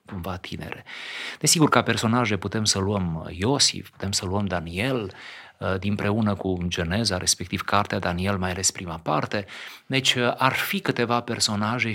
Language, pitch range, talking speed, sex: Romanian, 95-125 Hz, 140 wpm, male